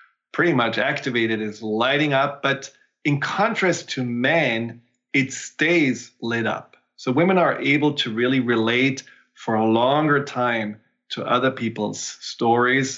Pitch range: 115-135 Hz